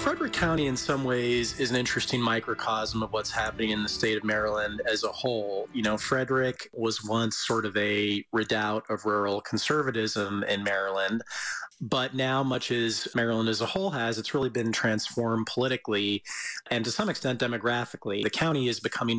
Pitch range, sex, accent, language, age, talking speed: 110-125 Hz, male, American, English, 30-49, 180 wpm